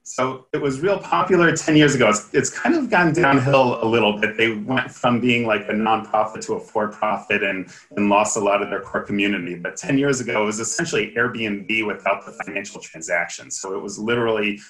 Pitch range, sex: 105-135 Hz, male